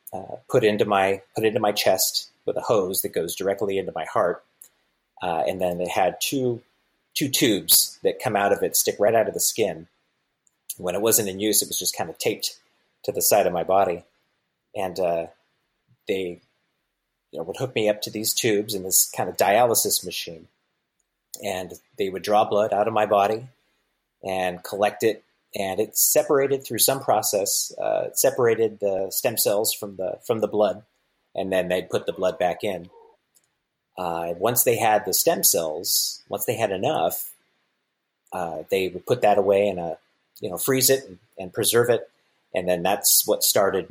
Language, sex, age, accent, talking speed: English, male, 30-49, American, 190 wpm